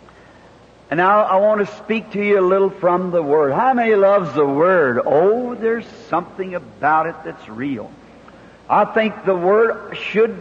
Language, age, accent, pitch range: English, 60-79, American, 170-210 Hz